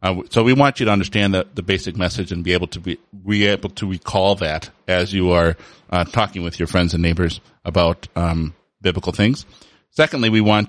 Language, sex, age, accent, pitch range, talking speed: English, male, 30-49, American, 90-110 Hz, 215 wpm